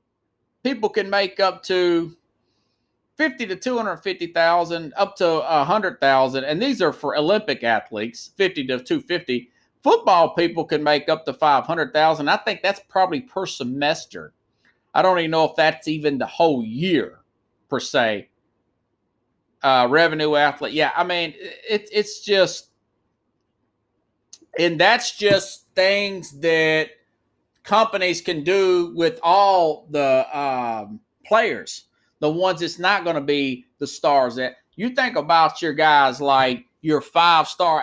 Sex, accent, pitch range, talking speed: male, American, 145-190 Hz, 150 wpm